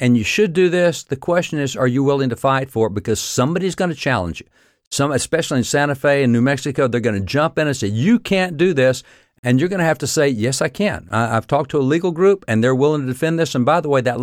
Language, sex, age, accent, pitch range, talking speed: English, male, 60-79, American, 120-160 Hz, 285 wpm